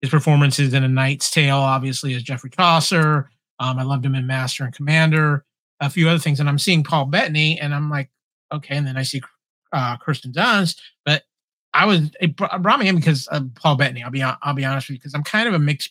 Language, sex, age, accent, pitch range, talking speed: English, male, 30-49, American, 140-175 Hz, 235 wpm